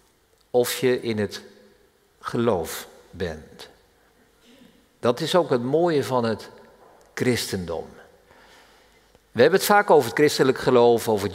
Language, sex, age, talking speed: Dutch, male, 50-69, 125 wpm